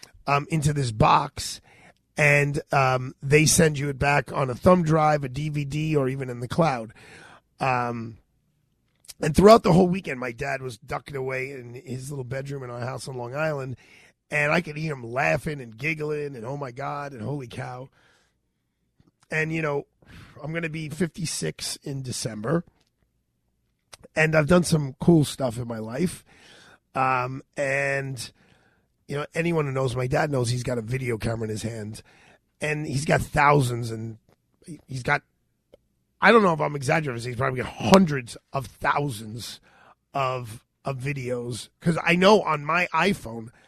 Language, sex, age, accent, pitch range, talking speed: English, male, 40-59, American, 125-155 Hz, 170 wpm